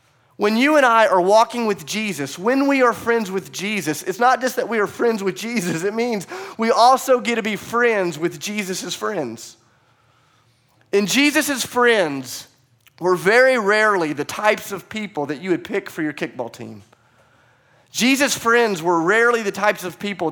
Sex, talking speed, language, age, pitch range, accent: male, 175 wpm, English, 30-49, 130-200 Hz, American